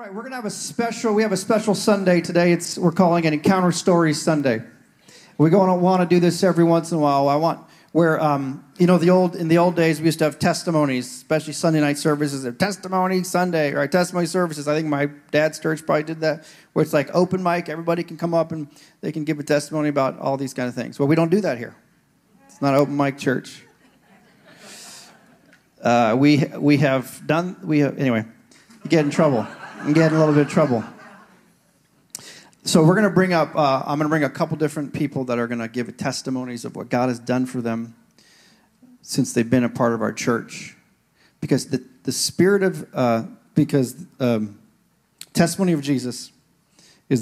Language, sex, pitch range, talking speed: English, male, 135-175 Hz, 210 wpm